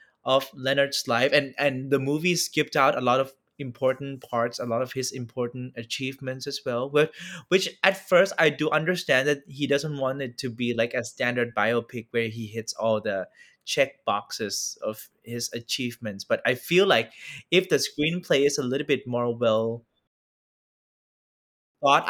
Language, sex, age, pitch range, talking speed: English, male, 20-39, 115-145 Hz, 175 wpm